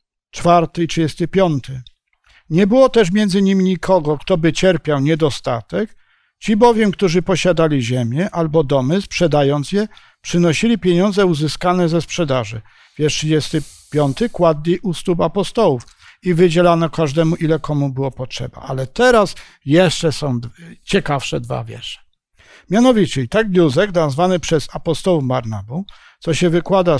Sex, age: male, 50-69